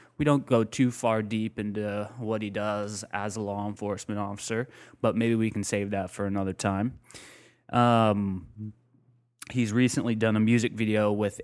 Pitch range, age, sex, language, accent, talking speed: 100-115 Hz, 20-39, male, English, American, 170 wpm